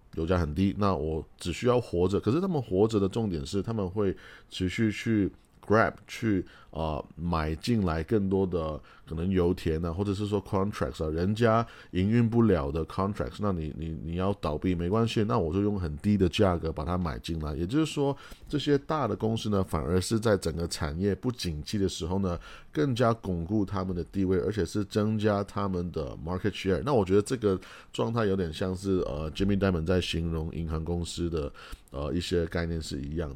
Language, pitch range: Chinese, 85-105 Hz